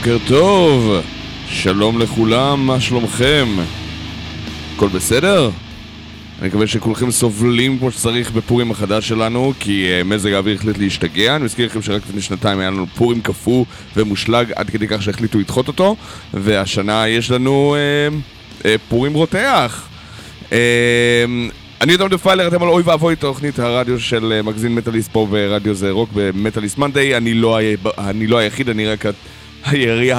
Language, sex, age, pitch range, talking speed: Hebrew, male, 20-39, 105-135 Hz, 150 wpm